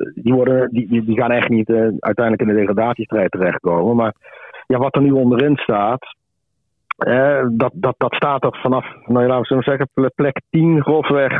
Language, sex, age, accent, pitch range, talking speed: Dutch, male, 50-69, Dutch, 105-130 Hz, 175 wpm